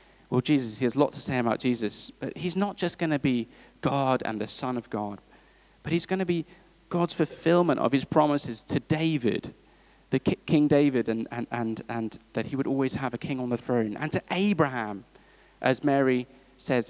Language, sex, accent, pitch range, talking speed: English, male, British, 125-180 Hz, 195 wpm